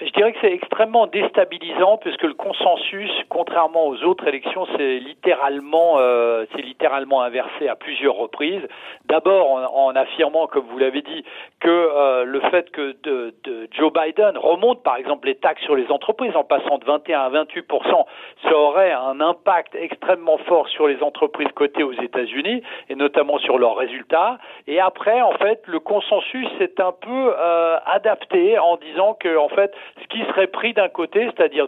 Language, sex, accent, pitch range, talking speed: French, male, French, 150-230 Hz, 175 wpm